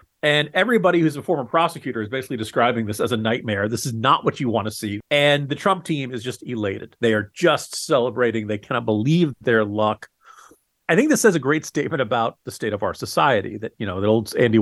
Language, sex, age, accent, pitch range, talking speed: English, male, 40-59, American, 110-150 Hz, 230 wpm